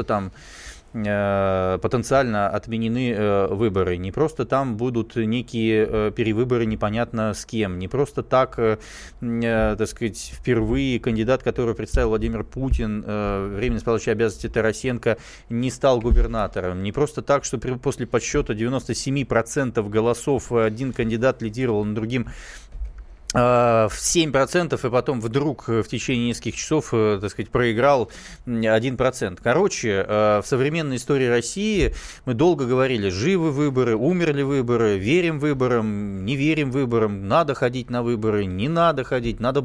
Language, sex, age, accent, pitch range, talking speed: Russian, male, 20-39, native, 110-135 Hz, 135 wpm